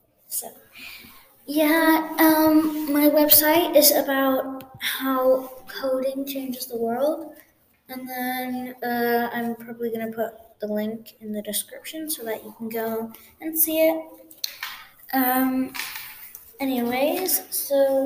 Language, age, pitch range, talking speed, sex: English, 20-39, 250-315 Hz, 115 wpm, female